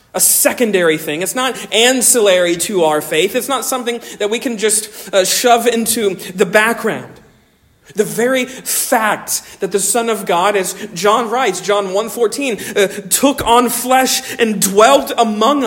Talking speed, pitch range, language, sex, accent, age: 155 wpm, 200-255 Hz, English, male, American, 40-59